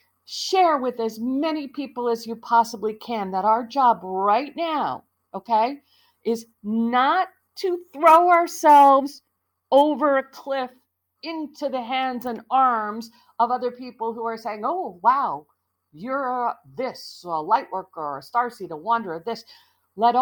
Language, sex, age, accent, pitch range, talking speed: English, female, 50-69, American, 210-295 Hz, 140 wpm